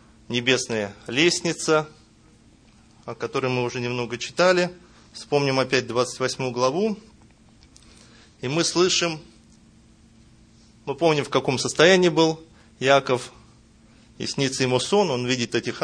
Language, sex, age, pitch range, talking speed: Russian, male, 20-39, 115-145 Hz, 110 wpm